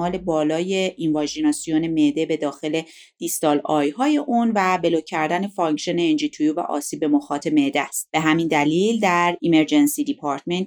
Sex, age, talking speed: female, 30-49, 150 wpm